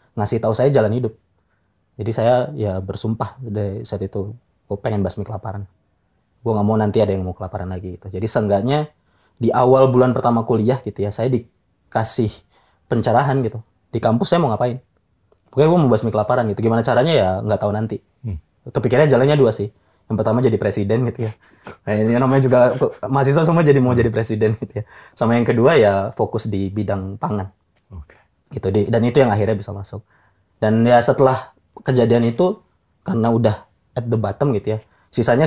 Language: Indonesian